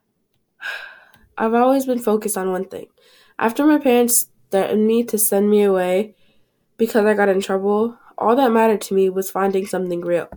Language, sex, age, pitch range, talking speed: English, female, 10-29, 195-245 Hz, 175 wpm